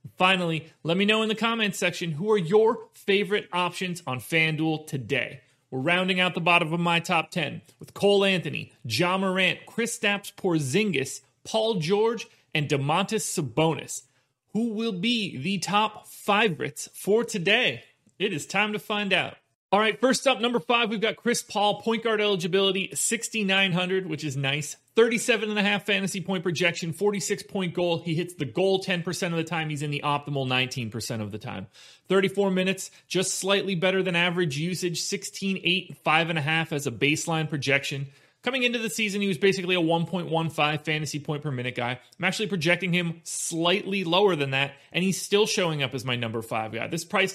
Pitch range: 155-200 Hz